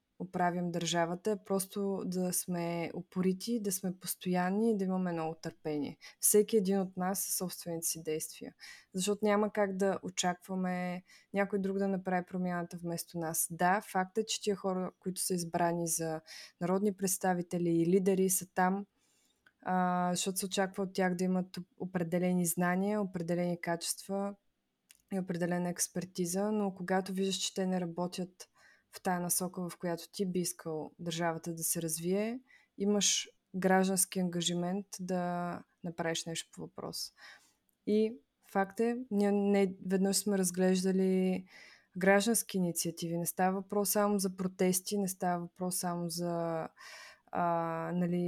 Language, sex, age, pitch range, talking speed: Bulgarian, female, 20-39, 175-195 Hz, 140 wpm